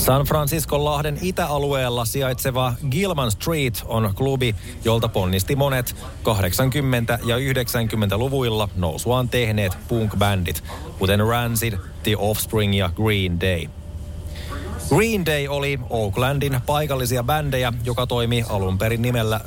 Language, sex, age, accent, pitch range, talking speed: Finnish, male, 30-49, native, 100-130 Hz, 110 wpm